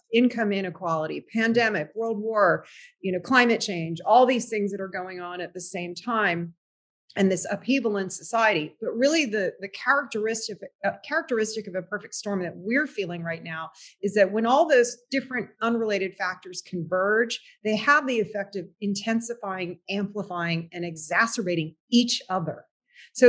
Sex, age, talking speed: female, 40-59, 160 wpm